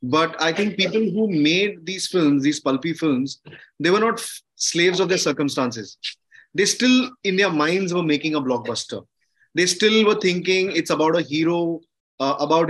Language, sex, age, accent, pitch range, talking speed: English, male, 20-39, Indian, 145-180 Hz, 180 wpm